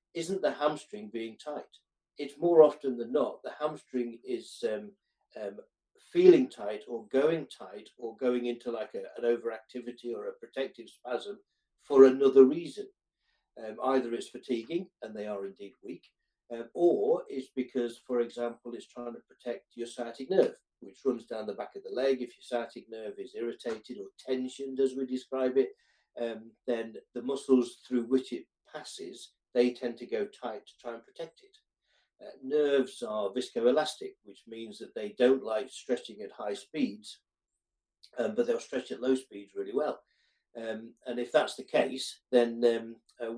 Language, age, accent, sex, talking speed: English, 60-79, British, male, 175 wpm